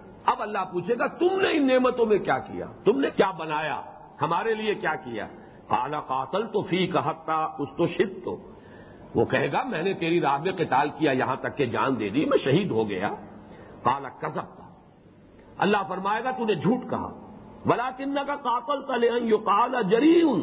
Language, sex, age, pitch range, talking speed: English, male, 50-69, 150-235 Hz, 145 wpm